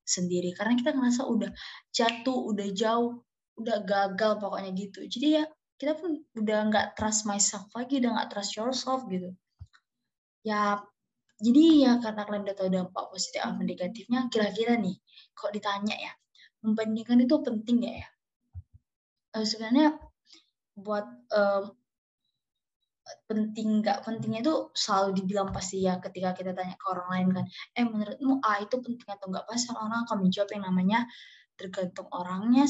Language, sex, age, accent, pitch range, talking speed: Indonesian, female, 20-39, native, 190-245 Hz, 150 wpm